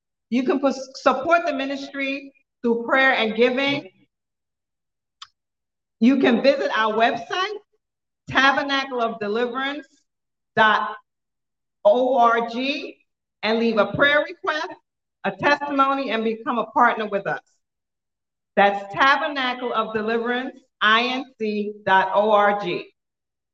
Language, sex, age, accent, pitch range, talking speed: English, female, 40-59, American, 215-270 Hz, 75 wpm